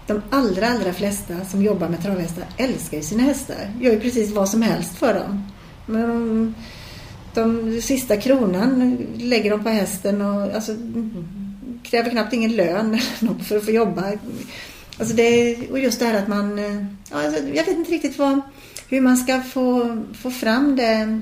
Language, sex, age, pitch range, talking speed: Swedish, female, 40-59, 200-245 Hz, 170 wpm